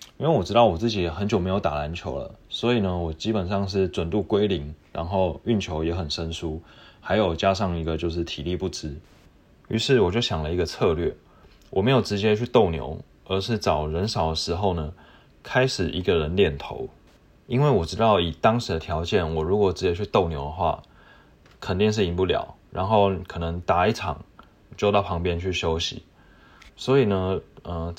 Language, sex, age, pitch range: Chinese, male, 20-39, 80-105 Hz